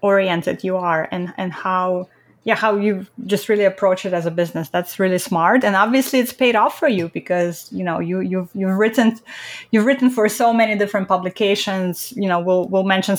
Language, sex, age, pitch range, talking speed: English, female, 20-39, 180-220 Hz, 205 wpm